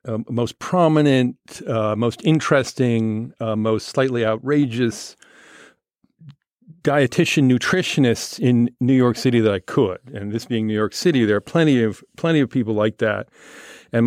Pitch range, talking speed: 110-130 Hz, 150 wpm